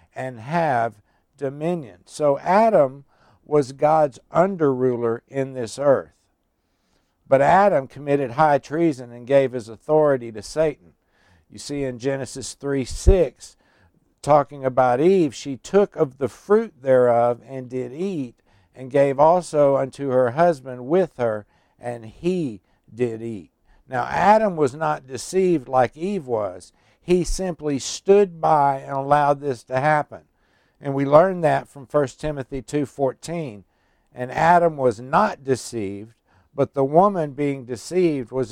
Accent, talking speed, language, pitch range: American, 140 wpm, English, 125-160 Hz